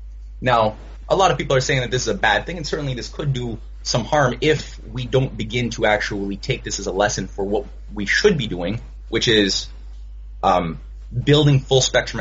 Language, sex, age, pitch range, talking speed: English, male, 20-39, 95-125 Hz, 205 wpm